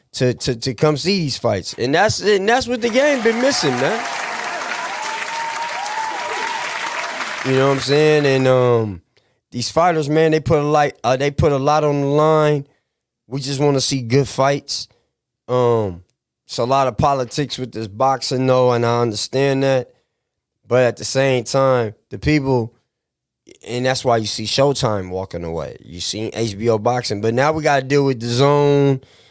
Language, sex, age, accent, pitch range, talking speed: English, male, 20-39, American, 120-145 Hz, 180 wpm